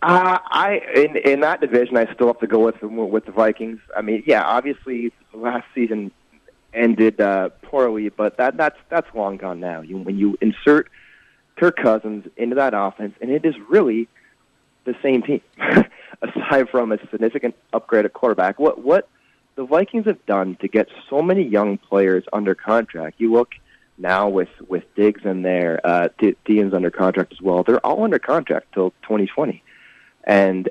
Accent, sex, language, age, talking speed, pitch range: American, male, English, 30-49, 175 wpm, 95-115 Hz